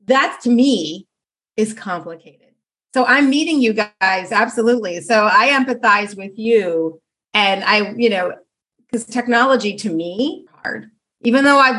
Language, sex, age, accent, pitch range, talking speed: English, female, 40-59, American, 210-265 Hz, 145 wpm